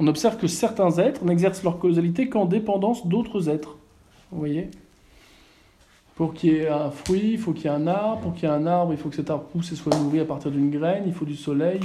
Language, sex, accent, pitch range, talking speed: French, male, French, 150-190 Hz, 255 wpm